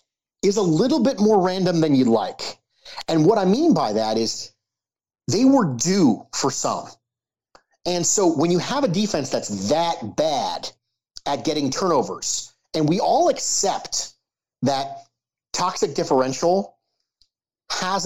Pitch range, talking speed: 140-210 Hz, 140 wpm